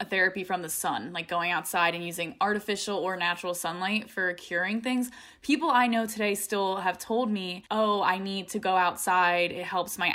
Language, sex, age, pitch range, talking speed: English, female, 10-29, 180-225 Hz, 200 wpm